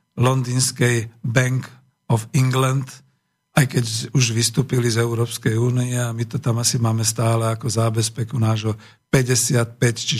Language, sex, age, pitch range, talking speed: Slovak, male, 50-69, 115-145 Hz, 135 wpm